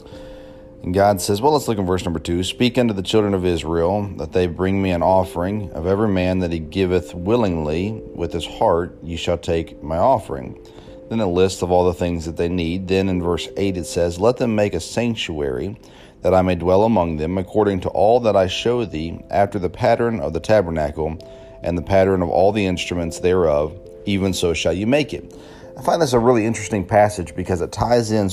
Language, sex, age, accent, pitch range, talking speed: English, male, 40-59, American, 85-105 Hz, 215 wpm